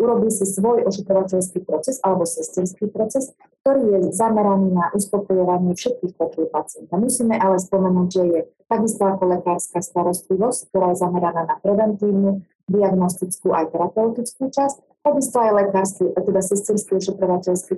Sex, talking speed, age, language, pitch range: female, 135 wpm, 30-49, Slovak, 180-215 Hz